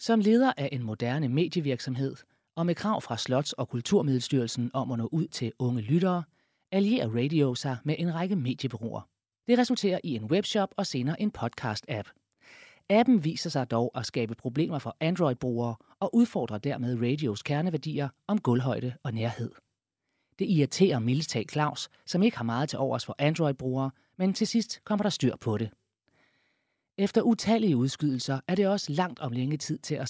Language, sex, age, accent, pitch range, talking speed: Danish, male, 30-49, native, 120-175 Hz, 170 wpm